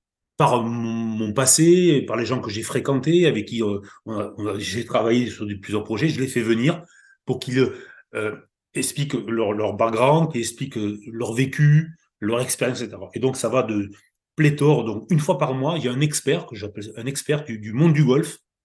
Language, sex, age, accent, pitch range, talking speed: French, male, 30-49, French, 105-135 Hz, 185 wpm